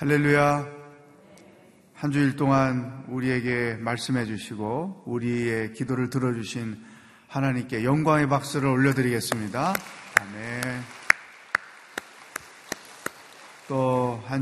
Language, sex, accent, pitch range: Korean, male, native, 115-155 Hz